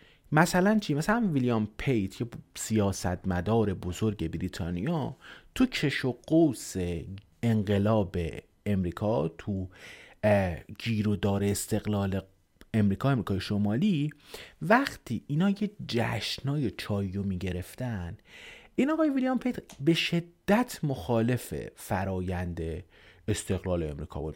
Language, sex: Persian, male